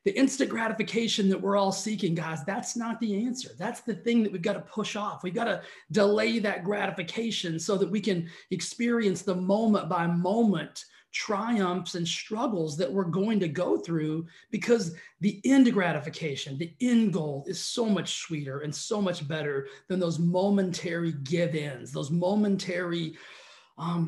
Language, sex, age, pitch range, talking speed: English, male, 30-49, 165-205 Hz, 165 wpm